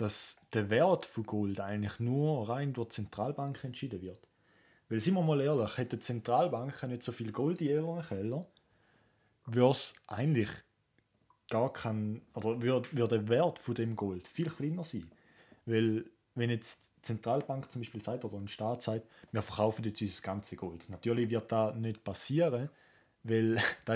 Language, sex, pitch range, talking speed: English, male, 110-135 Hz, 170 wpm